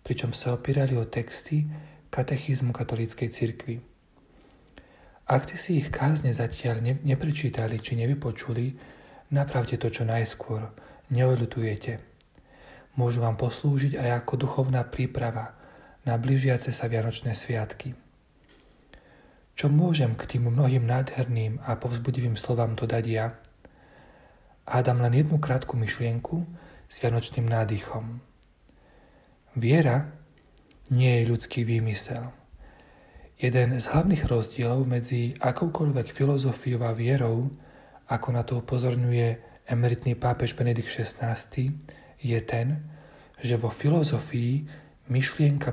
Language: Slovak